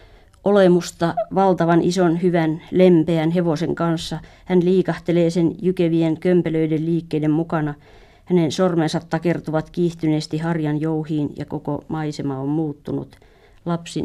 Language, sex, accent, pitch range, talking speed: Finnish, female, native, 150-175 Hz, 110 wpm